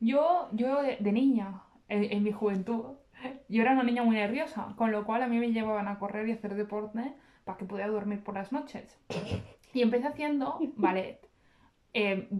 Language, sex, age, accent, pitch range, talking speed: Spanish, female, 20-39, Spanish, 205-250 Hz, 195 wpm